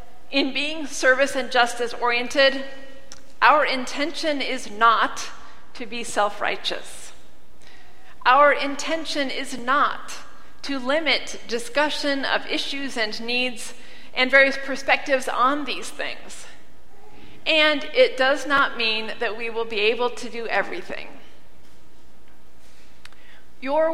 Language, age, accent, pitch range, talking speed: English, 40-59, American, 235-285 Hz, 110 wpm